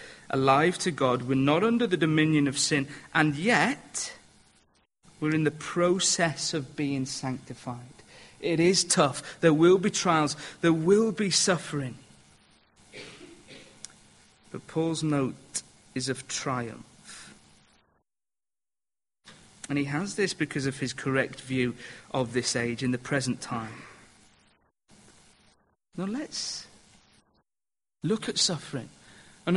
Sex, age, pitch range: male, 40-59, 125-175 Hz